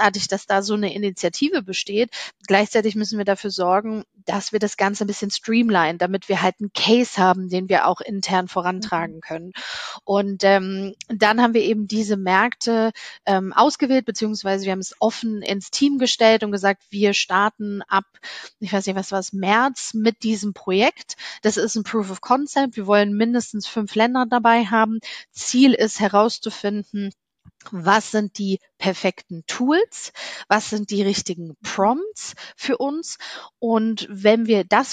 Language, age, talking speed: German, 30-49, 165 wpm